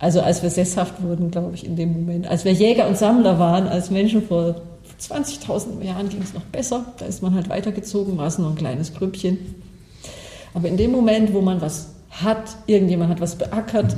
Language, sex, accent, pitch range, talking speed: German, female, German, 165-195 Hz, 205 wpm